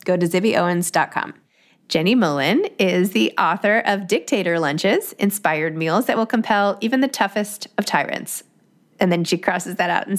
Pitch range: 170-225 Hz